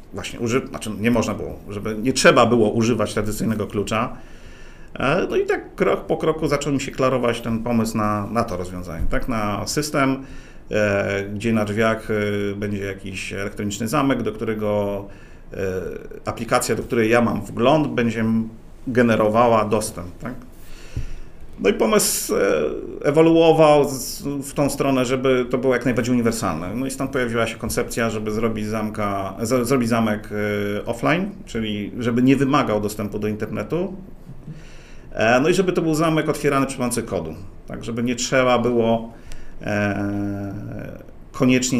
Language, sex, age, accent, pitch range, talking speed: Polish, male, 40-59, native, 105-130 Hz, 140 wpm